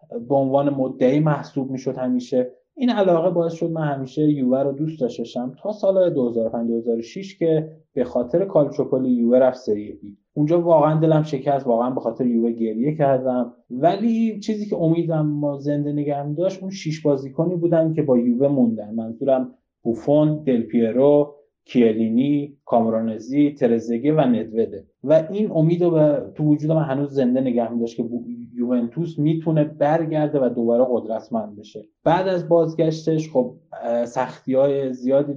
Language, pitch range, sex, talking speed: Persian, 120-155 Hz, male, 150 wpm